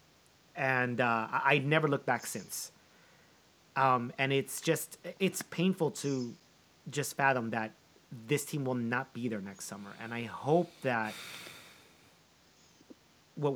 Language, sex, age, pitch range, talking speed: English, male, 30-49, 125-155 Hz, 135 wpm